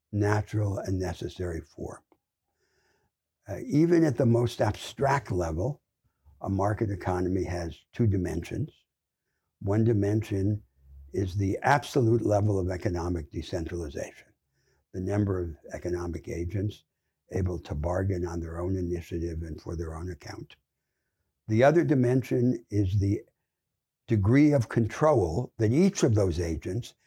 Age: 60-79